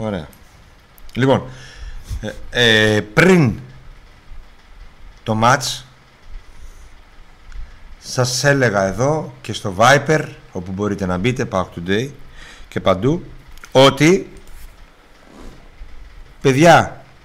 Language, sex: Greek, male